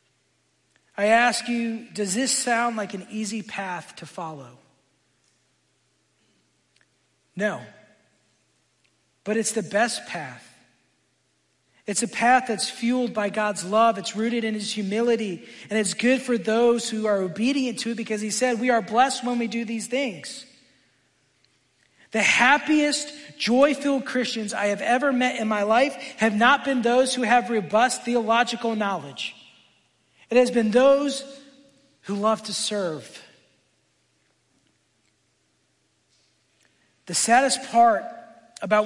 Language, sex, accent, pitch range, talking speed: English, male, American, 180-235 Hz, 130 wpm